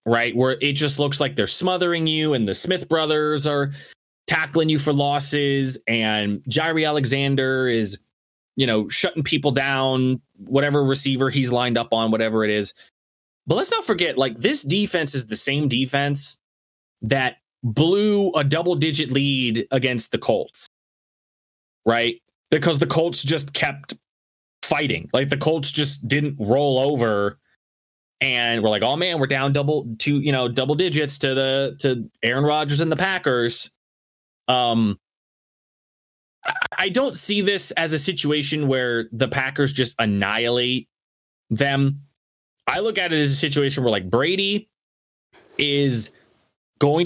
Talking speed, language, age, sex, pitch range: 150 wpm, English, 20-39, male, 115-155 Hz